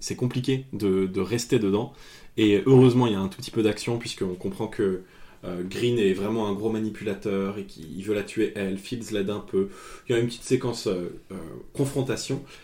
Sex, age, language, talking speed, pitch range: male, 20-39, French, 215 wpm, 100-125 Hz